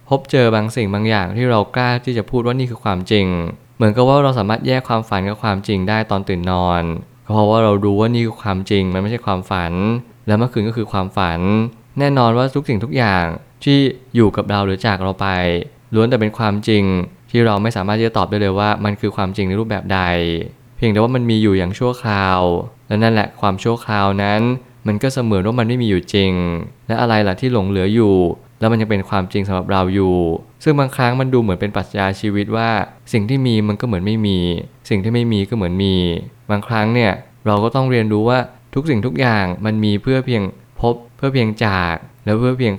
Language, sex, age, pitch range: Thai, male, 20-39, 100-120 Hz